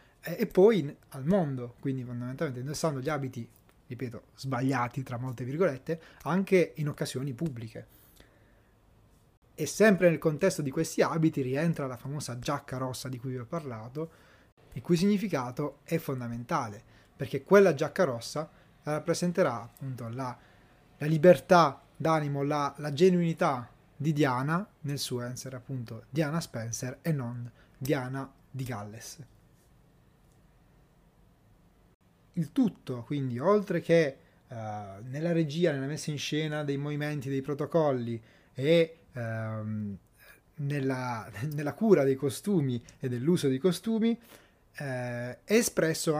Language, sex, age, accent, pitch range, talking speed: Italian, male, 30-49, native, 125-165 Hz, 125 wpm